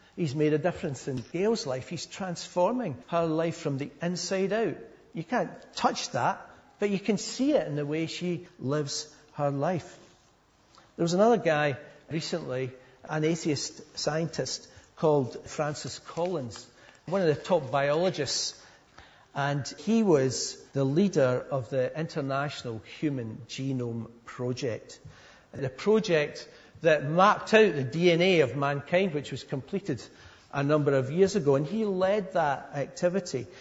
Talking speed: 145 wpm